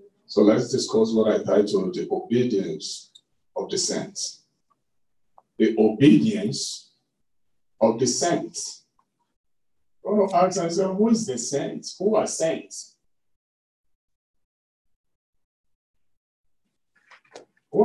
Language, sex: English, male